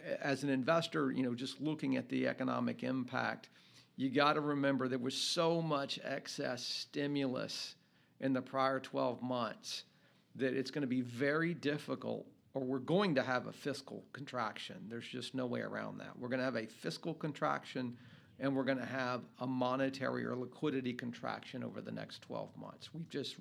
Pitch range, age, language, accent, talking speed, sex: 125-145 Hz, 50-69, English, American, 180 wpm, male